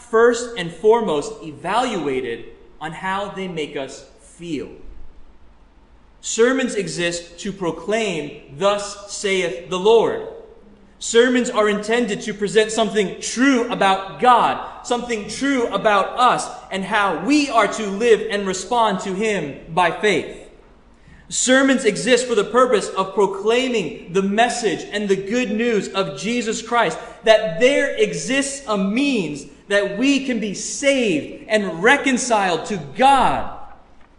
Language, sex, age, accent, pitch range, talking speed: English, male, 30-49, American, 195-245 Hz, 130 wpm